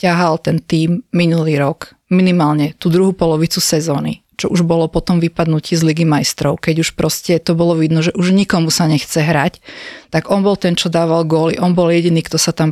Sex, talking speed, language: female, 210 wpm, Slovak